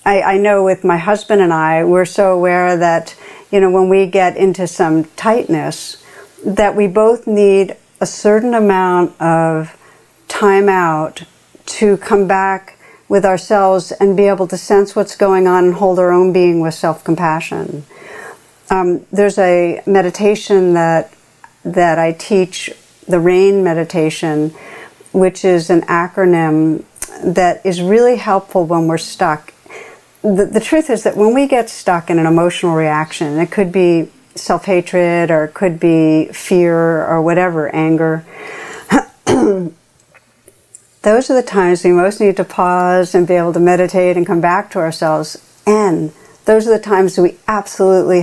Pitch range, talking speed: 170-200 Hz, 155 wpm